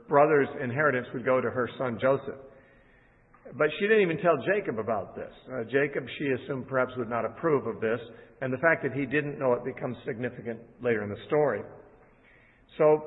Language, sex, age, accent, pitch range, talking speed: English, male, 50-69, American, 125-165 Hz, 190 wpm